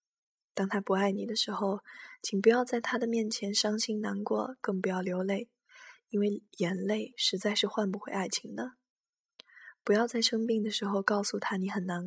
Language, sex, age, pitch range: Chinese, female, 10-29, 195-230 Hz